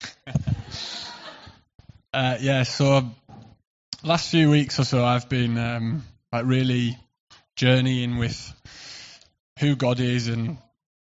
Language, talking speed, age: English, 105 wpm, 20-39